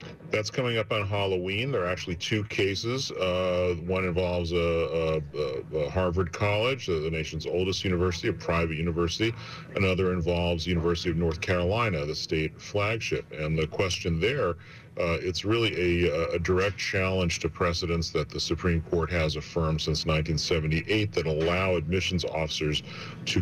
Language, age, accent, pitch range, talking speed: English, 40-59, American, 80-95 Hz, 160 wpm